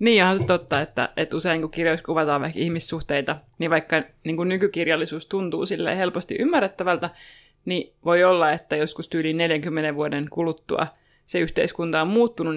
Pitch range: 160-180 Hz